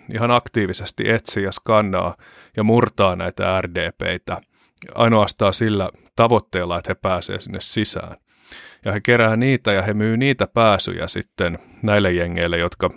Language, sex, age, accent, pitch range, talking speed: Finnish, male, 30-49, native, 95-110 Hz, 140 wpm